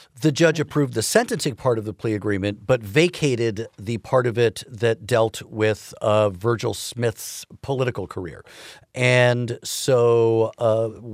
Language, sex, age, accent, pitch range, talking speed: English, male, 50-69, American, 110-140 Hz, 145 wpm